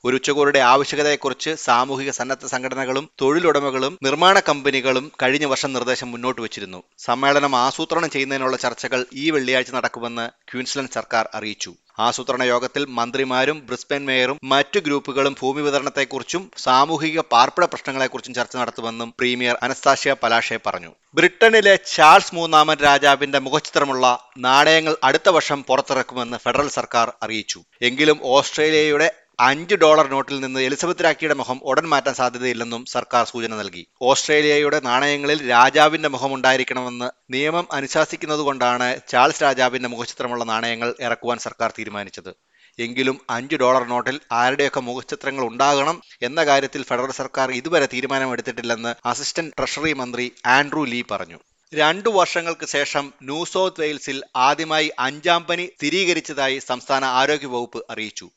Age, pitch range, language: 30-49, 125-150 Hz, Malayalam